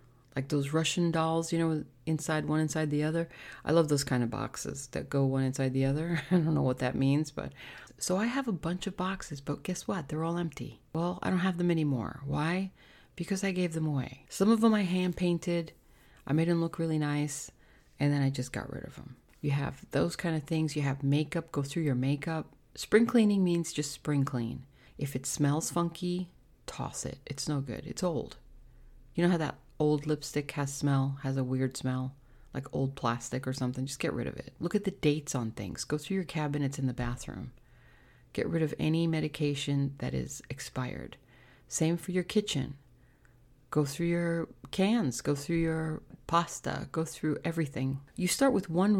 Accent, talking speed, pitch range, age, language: American, 205 wpm, 135-170 Hz, 40-59, English